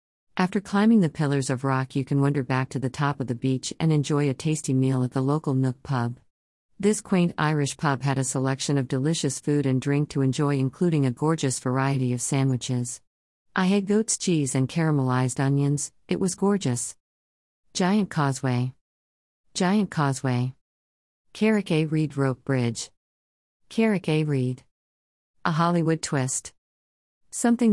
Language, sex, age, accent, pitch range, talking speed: English, female, 50-69, American, 130-155 Hz, 155 wpm